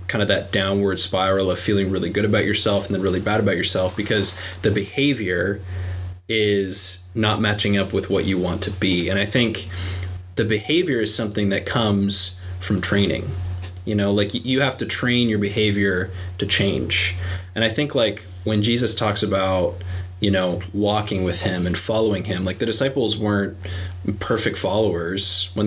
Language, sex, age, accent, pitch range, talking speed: English, male, 20-39, American, 90-105 Hz, 175 wpm